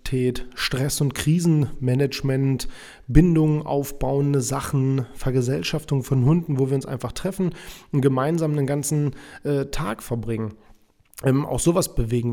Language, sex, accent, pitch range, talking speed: German, male, German, 130-155 Hz, 120 wpm